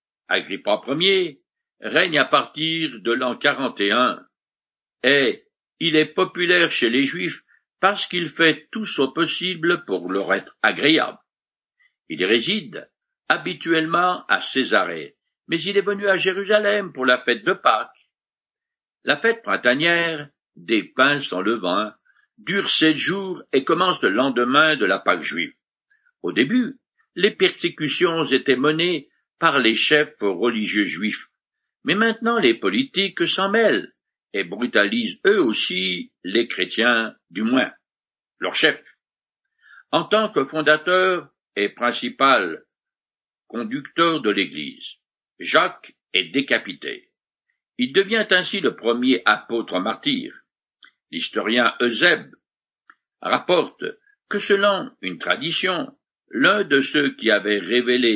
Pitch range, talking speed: 150-230 Hz, 120 wpm